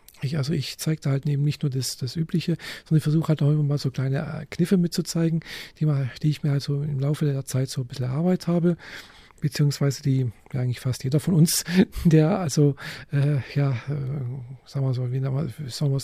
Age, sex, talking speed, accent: 40-59, male, 220 wpm, German